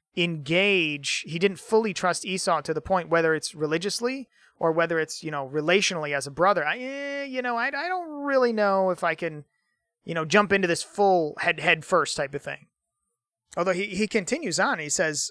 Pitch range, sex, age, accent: 160-220 Hz, male, 30-49, American